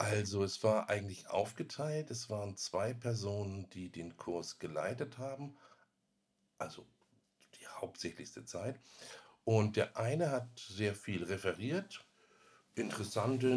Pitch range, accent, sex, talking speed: 90-115 Hz, German, male, 115 wpm